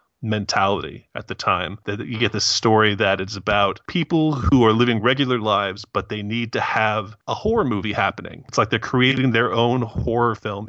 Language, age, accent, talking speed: English, 30-49, American, 195 wpm